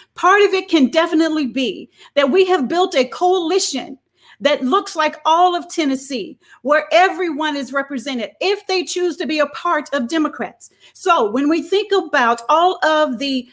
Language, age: English, 40-59